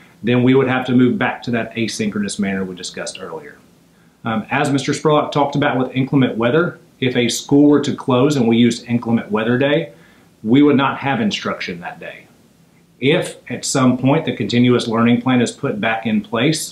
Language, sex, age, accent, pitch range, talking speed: English, male, 40-59, American, 115-140 Hz, 195 wpm